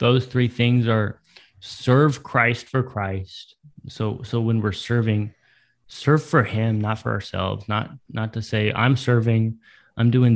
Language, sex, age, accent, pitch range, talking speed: English, male, 20-39, American, 105-125 Hz, 155 wpm